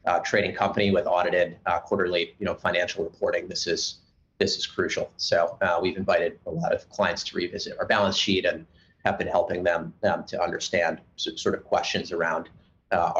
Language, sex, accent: English, male, American